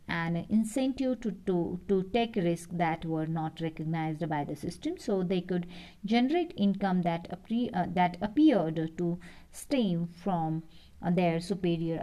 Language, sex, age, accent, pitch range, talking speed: English, female, 50-69, Indian, 170-210 Hz, 140 wpm